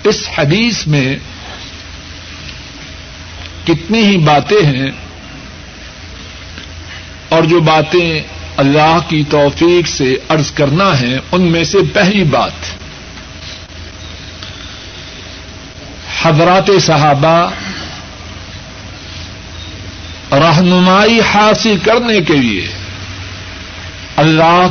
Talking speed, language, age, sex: 75 wpm, Urdu, 60-79, male